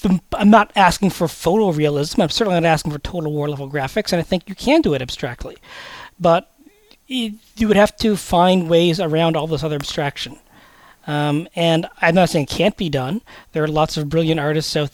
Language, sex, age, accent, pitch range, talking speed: English, male, 40-59, American, 150-195 Hz, 195 wpm